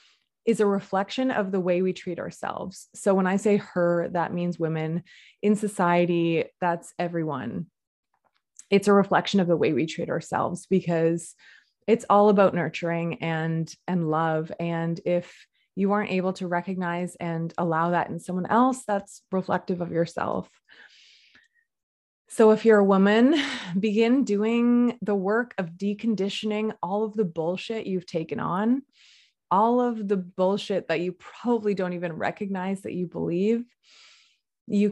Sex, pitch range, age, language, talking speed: female, 175-205 Hz, 20-39, English, 150 wpm